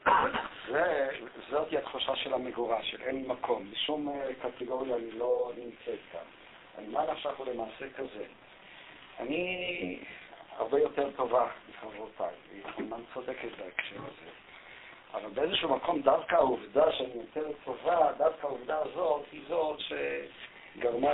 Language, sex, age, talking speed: Hebrew, male, 50-69, 120 wpm